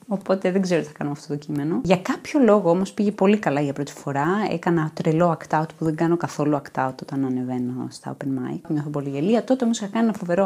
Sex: female